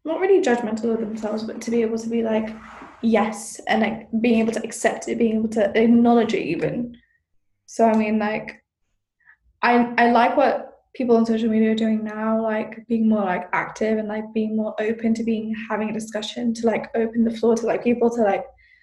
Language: English